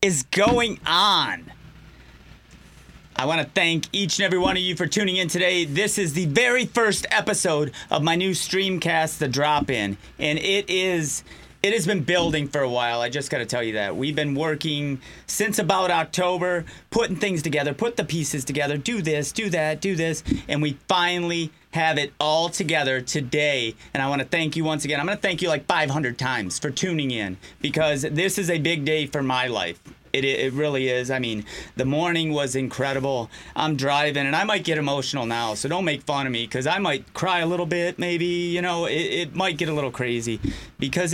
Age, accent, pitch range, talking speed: 30-49, American, 140-180 Hz, 210 wpm